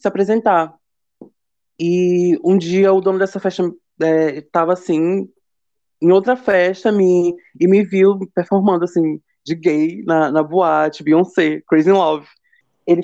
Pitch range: 165-200 Hz